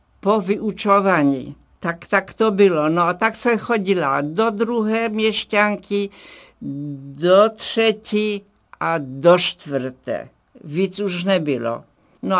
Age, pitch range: 60-79, 155-190 Hz